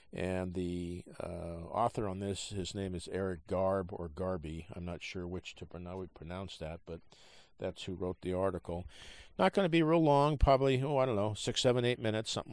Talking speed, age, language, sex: 215 wpm, 50-69, English, male